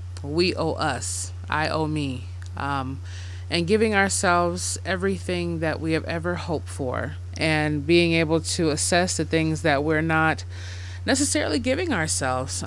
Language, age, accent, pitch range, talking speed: English, 20-39, American, 90-145 Hz, 140 wpm